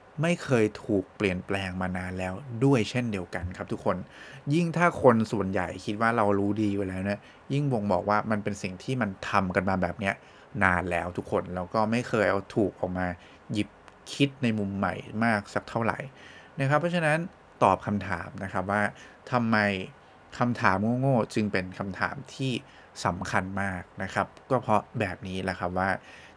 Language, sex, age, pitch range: English, male, 20-39, 95-120 Hz